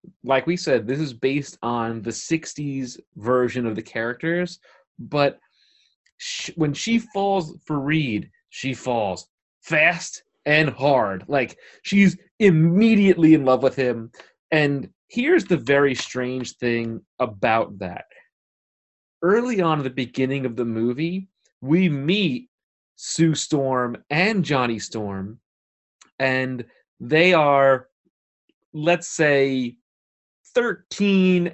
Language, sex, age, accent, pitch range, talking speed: English, male, 30-49, American, 125-175 Hz, 115 wpm